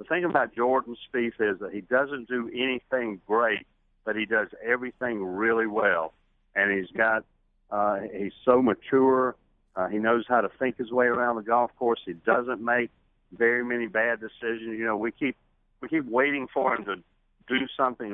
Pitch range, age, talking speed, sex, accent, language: 105-125 Hz, 50-69, 185 wpm, male, American, English